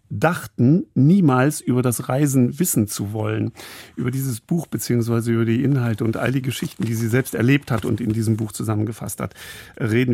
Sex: male